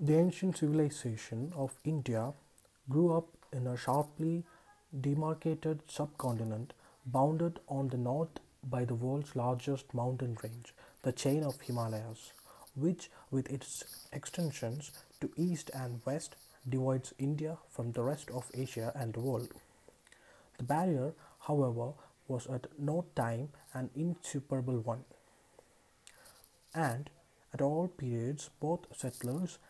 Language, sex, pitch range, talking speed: English, male, 125-155 Hz, 120 wpm